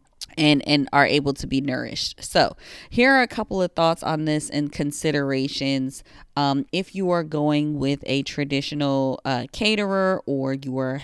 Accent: American